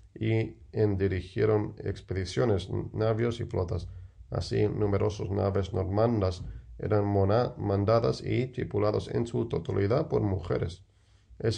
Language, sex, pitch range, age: English, male, 90-105 Hz, 40-59